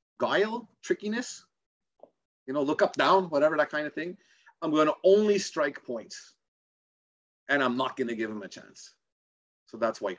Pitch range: 130-190 Hz